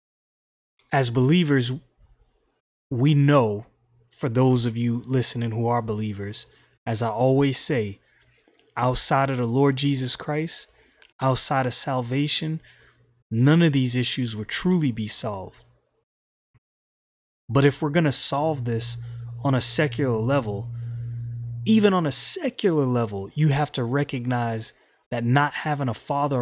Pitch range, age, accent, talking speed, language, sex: 120-150 Hz, 20-39, American, 130 wpm, English, male